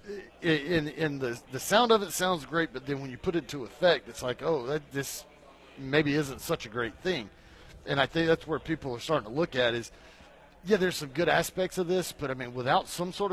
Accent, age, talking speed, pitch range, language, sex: American, 40-59, 240 wpm, 125-155 Hz, English, male